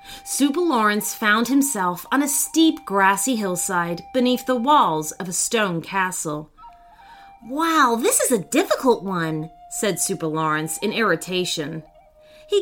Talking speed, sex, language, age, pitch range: 135 wpm, female, English, 30-49, 190-295 Hz